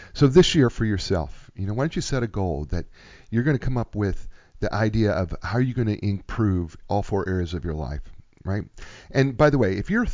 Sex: male